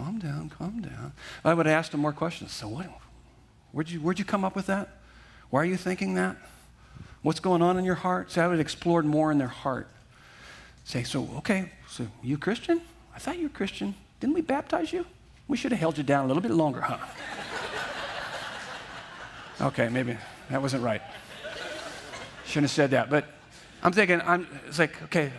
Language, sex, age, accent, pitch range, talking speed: English, male, 40-59, American, 135-180 Hz, 195 wpm